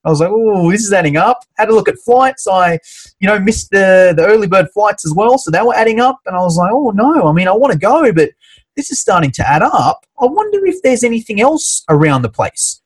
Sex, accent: male, Australian